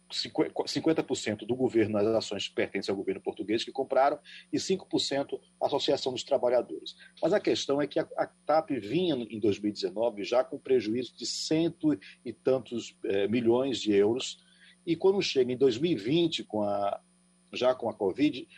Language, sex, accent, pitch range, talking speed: Portuguese, male, Brazilian, 110-175 Hz, 165 wpm